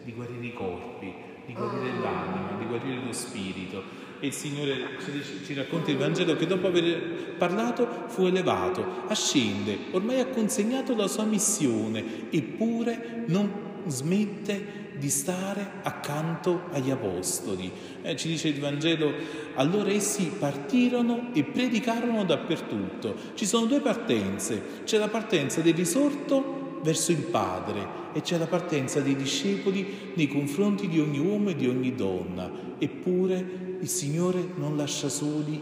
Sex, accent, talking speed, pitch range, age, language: male, native, 140 wpm, 135-200 Hz, 30-49, Italian